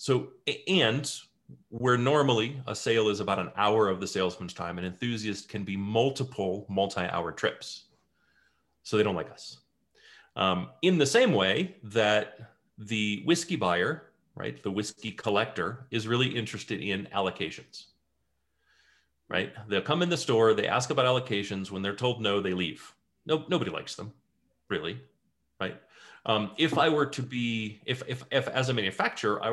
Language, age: English, 30-49